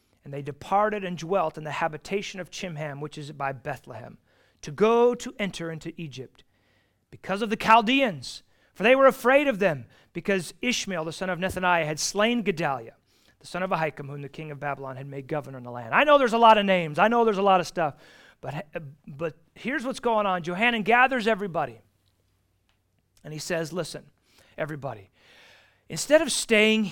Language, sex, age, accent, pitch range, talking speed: English, male, 40-59, American, 155-225 Hz, 190 wpm